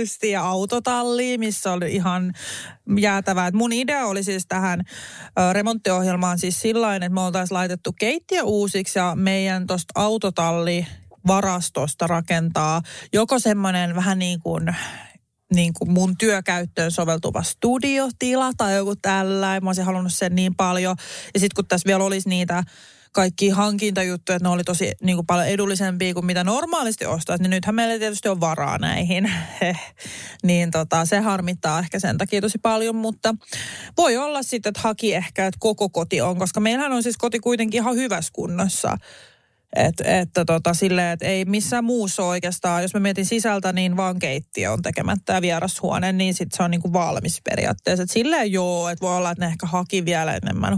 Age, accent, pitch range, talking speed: 30-49, native, 180-215 Hz, 160 wpm